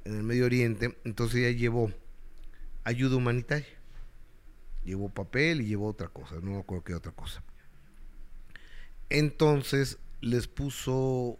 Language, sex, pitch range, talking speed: Spanish, male, 100-130 Hz, 125 wpm